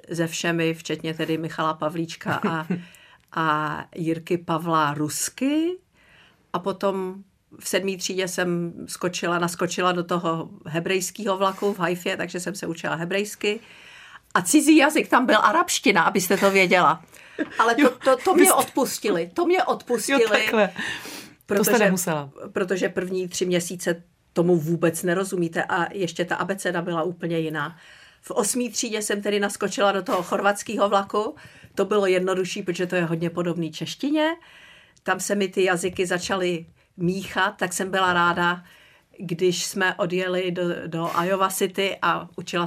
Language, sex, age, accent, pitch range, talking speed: Czech, female, 50-69, native, 170-200 Hz, 145 wpm